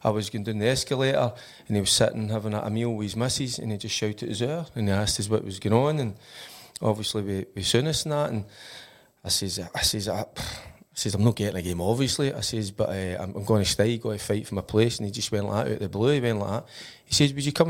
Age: 30-49